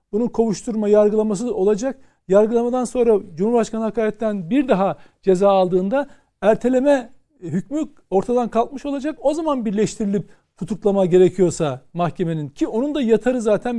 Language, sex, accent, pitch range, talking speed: Turkish, male, native, 185-240 Hz, 120 wpm